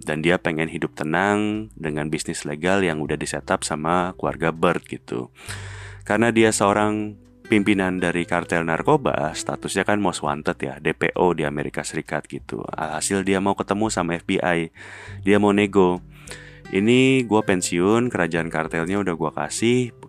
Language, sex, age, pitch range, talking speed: Indonesian, male, 30-49, 80-105 Hz, 145 wpm